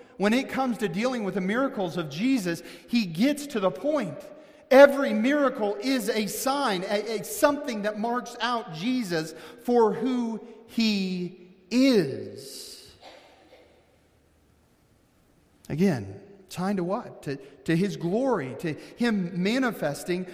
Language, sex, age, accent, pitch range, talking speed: English, male, 40-59, American, 200-245 Hz, 125 wpm